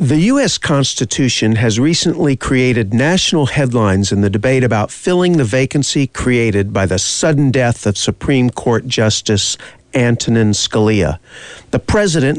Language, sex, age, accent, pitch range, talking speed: English, male, 50-69, American, 110-155 Hz, 135 wpm